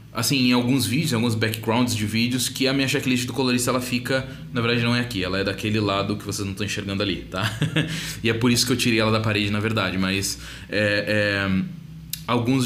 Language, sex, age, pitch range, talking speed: Portuguese, male, 20-39, 115-150 Hz, 230 wpm